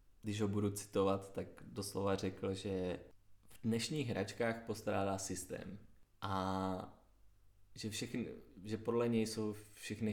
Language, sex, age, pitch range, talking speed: Czech, male, 20-39, 95-105 Hz, 125 wpm